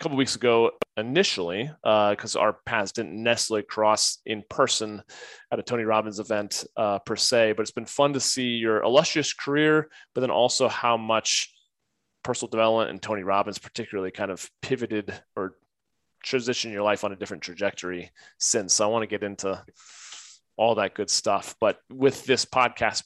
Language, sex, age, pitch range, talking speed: English, male, 30-49, 105-120 Hz, 175 wpm